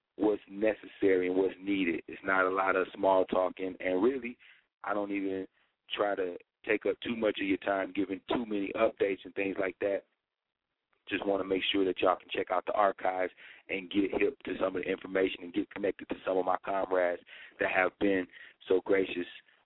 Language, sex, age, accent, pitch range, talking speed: English, male, 30-49, American, 95-100 Hz, 210 wpm